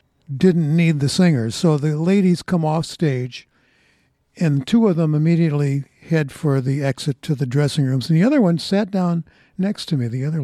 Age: 60-79